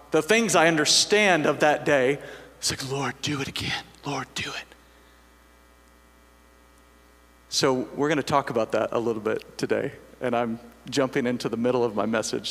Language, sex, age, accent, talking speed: English, male, 40-59, American, 175 wpm